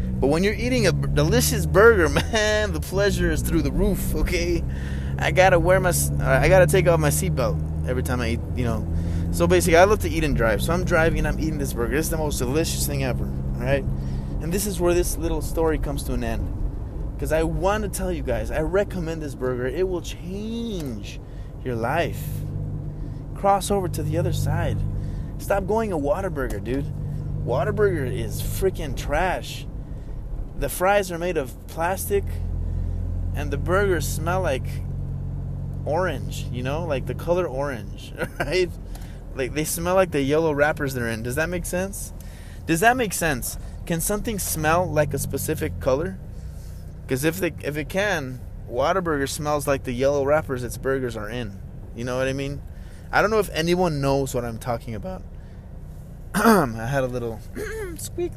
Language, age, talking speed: English, 20-39, 185 wpm